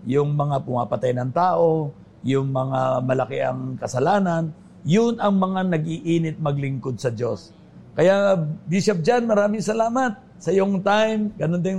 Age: 50-69